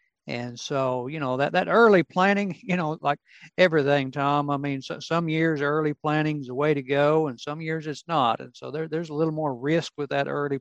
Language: English